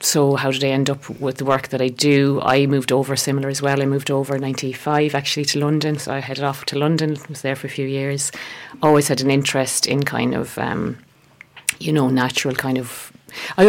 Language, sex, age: English, female, 30-49